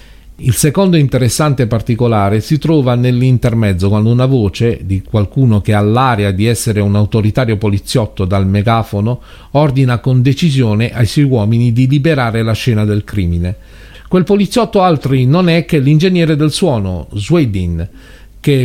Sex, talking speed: male, 145 wpm